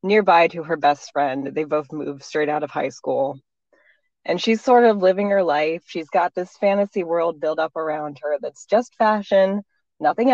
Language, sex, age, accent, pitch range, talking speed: English, female, 20-39, American, 150-205 Hz, 190 wpm